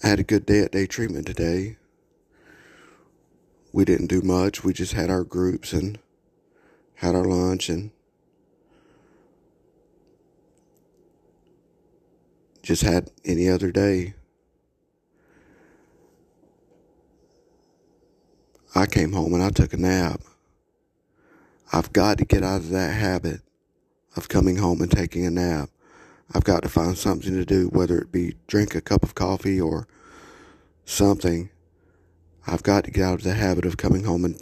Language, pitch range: English, 85-100 Hz